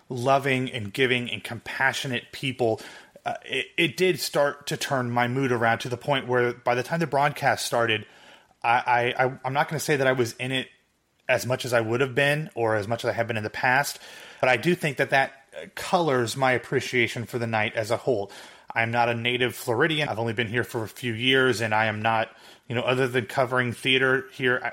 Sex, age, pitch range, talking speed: male, 30-49, 120-135 Hz, 225 wpm